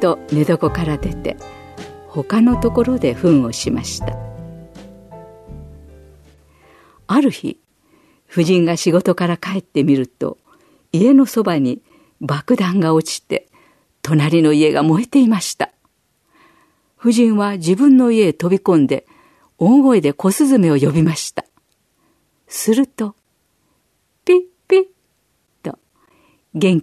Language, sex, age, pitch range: Japanese, female, 50-69, 155-220 Hz